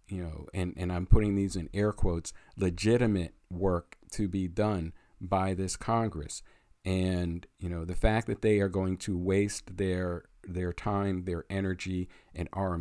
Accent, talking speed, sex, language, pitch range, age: American, 170 wpm, male, English, 85-100 Hz, 50-69